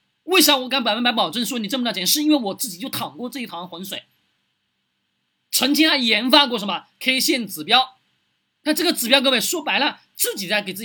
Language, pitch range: Chinese, 210-295 Hz